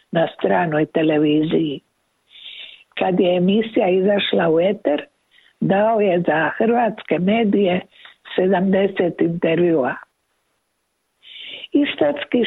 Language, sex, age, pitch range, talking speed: Croatian, female, 60-79, 175-225 Hz, 80 wpm